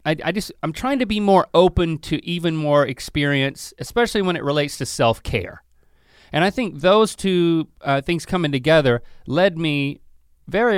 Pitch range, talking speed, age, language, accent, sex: 120-175 Hz, 175 wpm, 30-49, English, American, male